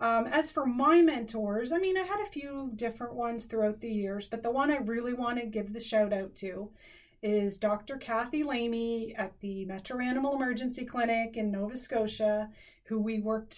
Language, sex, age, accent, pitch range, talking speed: English, female, 30-49, American, 205-250 Hz, 195 wpm